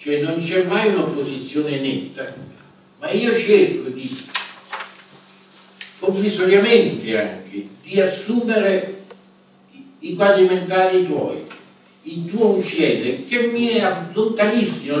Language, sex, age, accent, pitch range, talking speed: Italian, male, 60-79, native, 140-215 Hz, 100 wpm